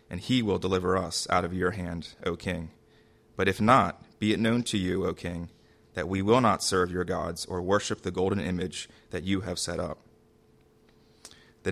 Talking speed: 200 wpm